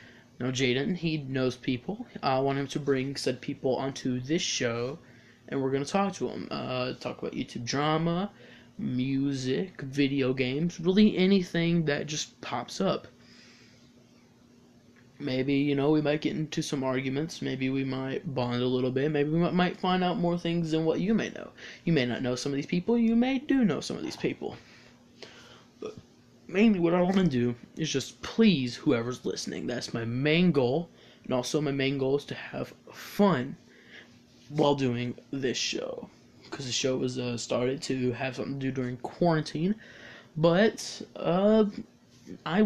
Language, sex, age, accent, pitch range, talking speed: English, male, 20-39, American, 125-165 Hz, 175 wpm